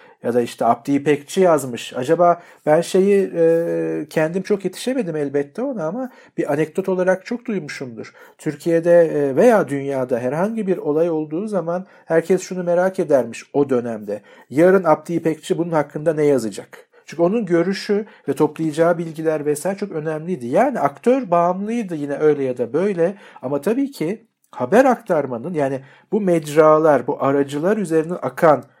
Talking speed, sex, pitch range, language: 150 wpm, male, 145-190 Hz, Turkish